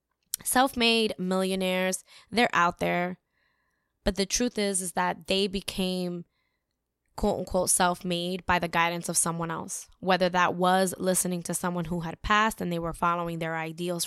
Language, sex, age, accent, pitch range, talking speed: English, female, 10-29, American, 170-190 Hz, 155 wpm